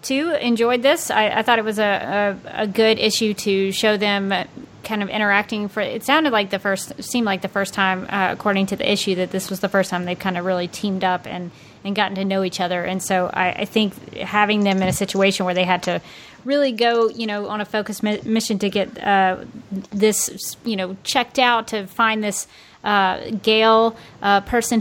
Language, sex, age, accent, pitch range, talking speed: English, female, 30-49, American, 190-225 Hz, 225 wpm